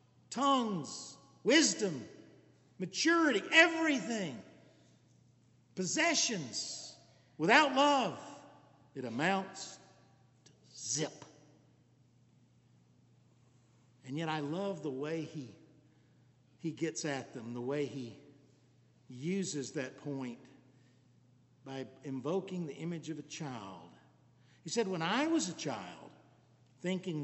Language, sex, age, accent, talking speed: English, male, 50-69, American, 95 wpm